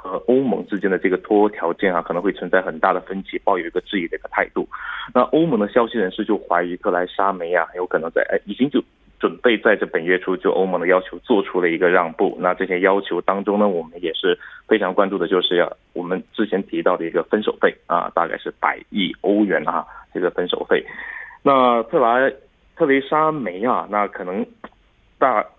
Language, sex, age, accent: Korean, male, 30-49, Chinese